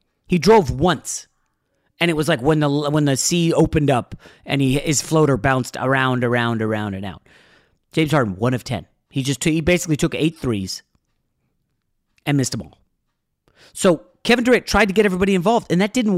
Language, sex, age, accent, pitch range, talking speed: English, male, 30-49, American, 125-170 Hz, 195 wpm